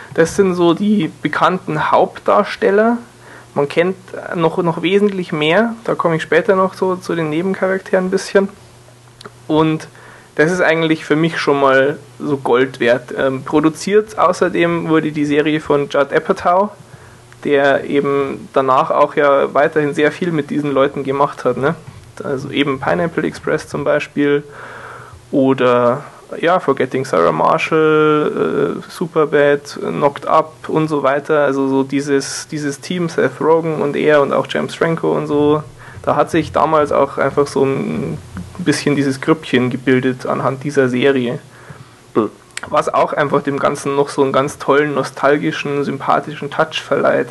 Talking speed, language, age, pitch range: 150 wpm, German, 20-39, 135-160 Hz